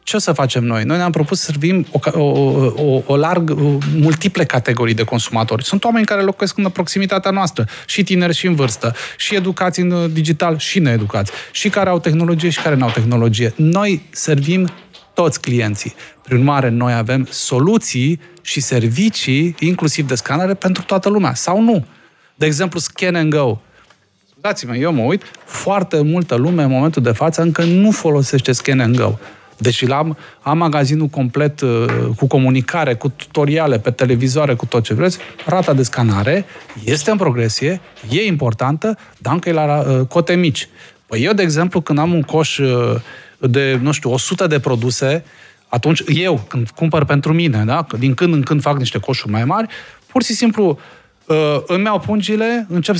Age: 30-49